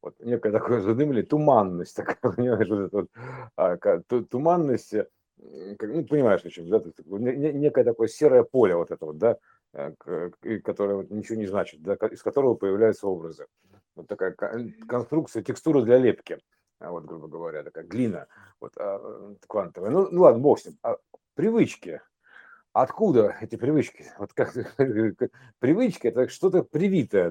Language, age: Russian, 50-69